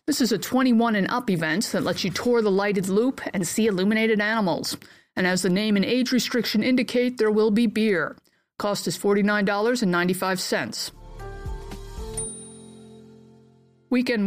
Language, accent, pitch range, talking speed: English, American, 190-240 Hz, 145 wpm